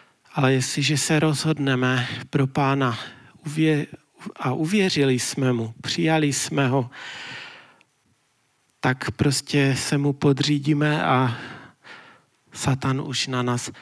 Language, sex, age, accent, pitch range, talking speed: Czech, male, 40-59, native, 130-155 Hz, 100 wpm